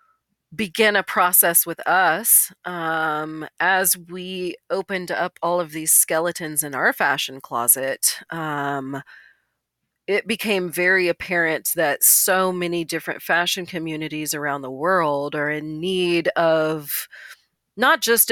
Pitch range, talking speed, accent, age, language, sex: 150-195 Hz, 125 wpm, American, 40-59, English, female